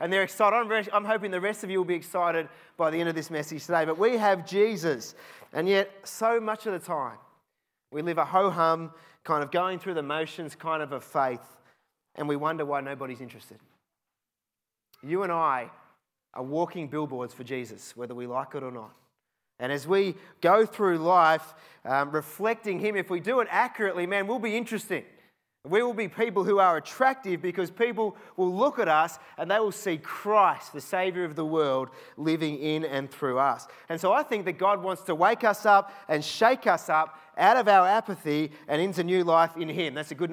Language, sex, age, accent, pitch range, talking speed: English, male, 30-49, Australian, 150-200 Hz, 205 wpm